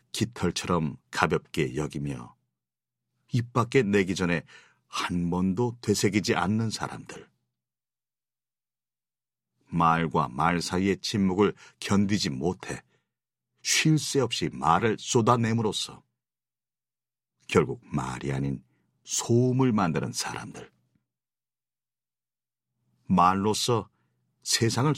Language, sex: Korean, male